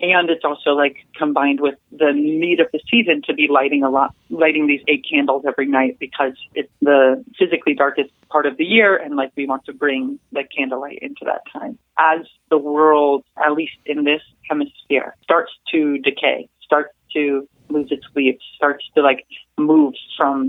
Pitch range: 140-155 Hz